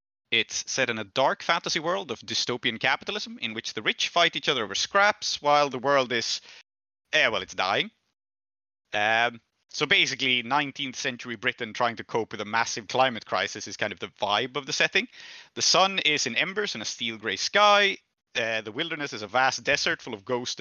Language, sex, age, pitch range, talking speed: English, male, 30-49, 120-170 Hz, 200 wpm